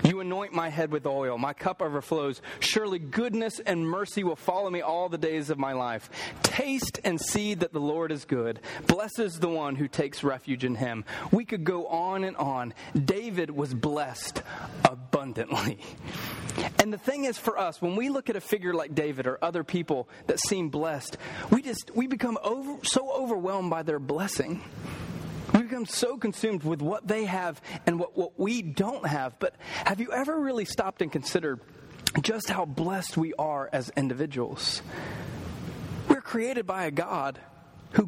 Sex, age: male, 30-49